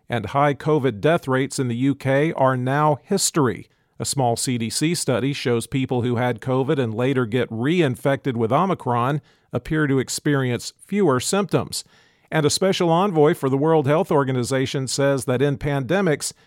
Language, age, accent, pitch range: English, 50-69, American, 125-155 Hz